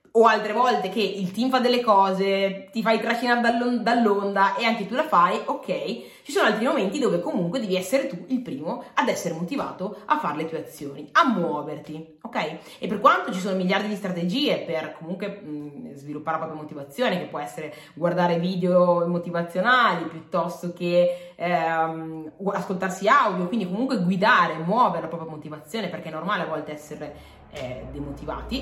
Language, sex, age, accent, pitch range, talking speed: Italian, female, 20-39, native, 160-220 Hz, 170 wpm